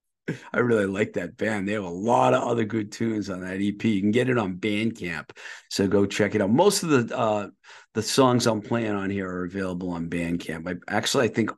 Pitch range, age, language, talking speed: 105-125 Hz, 50-69, English, 235 wpm